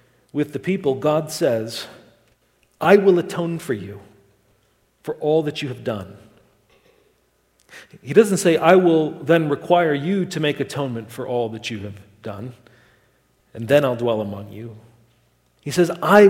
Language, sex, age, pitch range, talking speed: English, male, 40-59, 115-150 Hz, 155 wpm